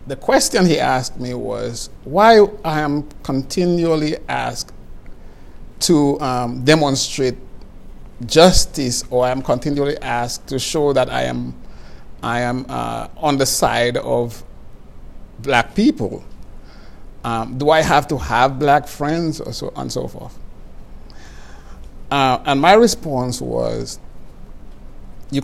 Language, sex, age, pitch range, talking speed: English, male, 50-69, 120-150 Hz, 125 wpm